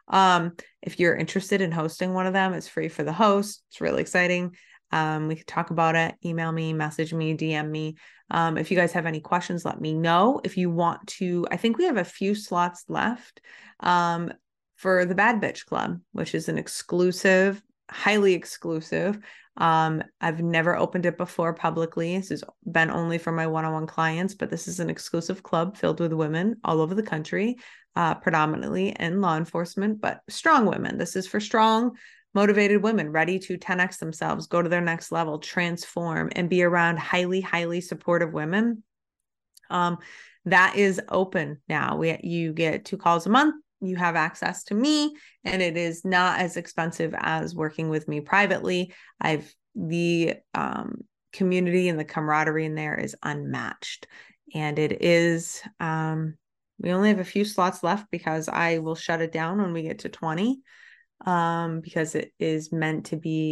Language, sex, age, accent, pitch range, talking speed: English, female, 20-39, American, 160-190 Hz, 180 wpm